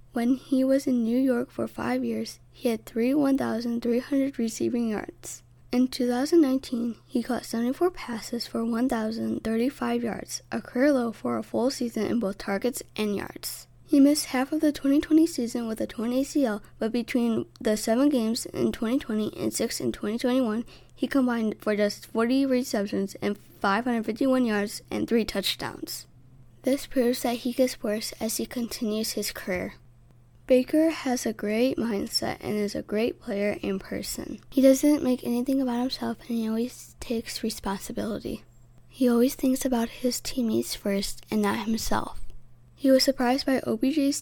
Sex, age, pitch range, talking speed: female, 20-39, 205-260 Hz, 165 wpm